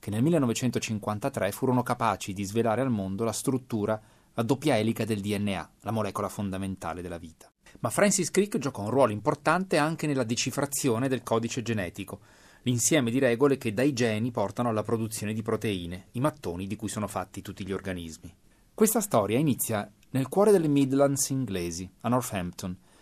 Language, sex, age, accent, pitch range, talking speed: Italian, male, 30-49, native, 100-135 Hz, 165 wpm